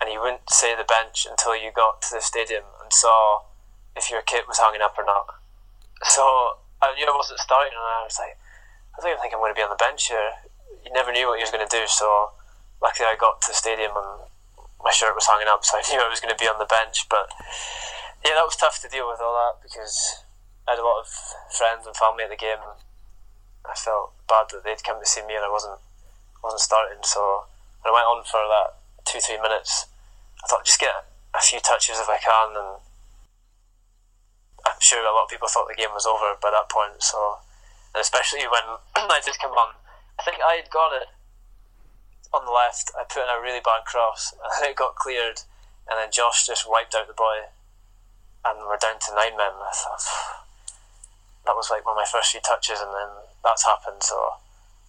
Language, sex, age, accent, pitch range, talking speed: English, male, 20-39, British, 95-115 Hz, 225 wpm